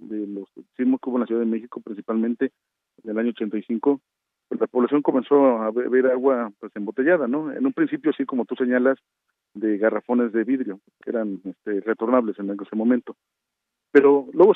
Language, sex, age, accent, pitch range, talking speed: Spanish, male, 40-59, Mexican, 110-135 Hz, 185 wpm